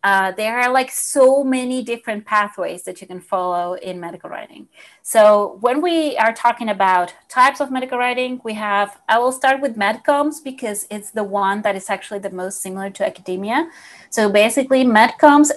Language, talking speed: English, 180 wpm